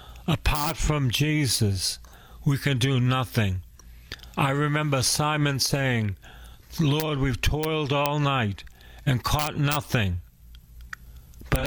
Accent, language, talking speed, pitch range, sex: American, English, 105 wpm, 95-150 Hz, male